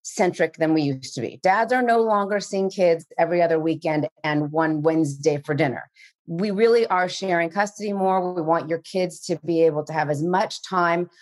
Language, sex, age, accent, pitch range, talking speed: English, female, 30-49, American, 160-195 Hz, 205 wpm